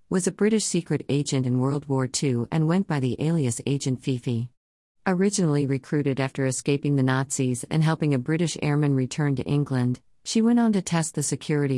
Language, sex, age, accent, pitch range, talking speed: English, female, 50-69, American, 130-160 Hz, 190 wpm